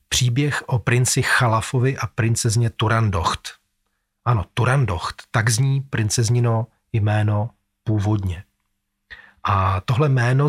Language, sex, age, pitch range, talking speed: Czech, male, 40-59, 105-125 Hz, 95 wpm